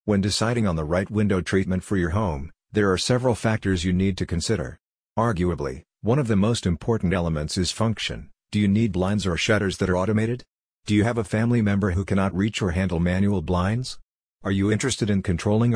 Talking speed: 205 wpm